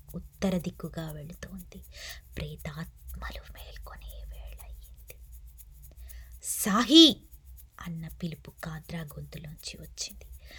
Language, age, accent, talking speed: Telugu, 20-39, native, 70 wpm